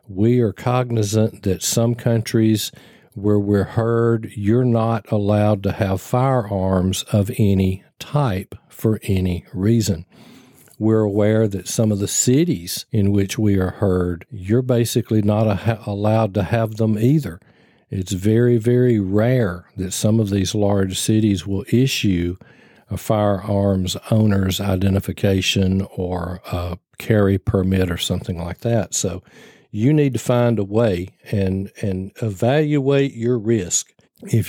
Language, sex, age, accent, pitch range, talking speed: English, male, 50-69, American, 95-120 Hz, 135 wpm